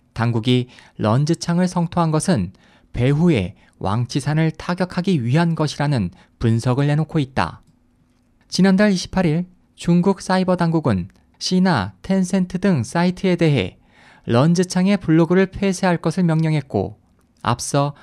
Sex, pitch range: male, 125-180 Hz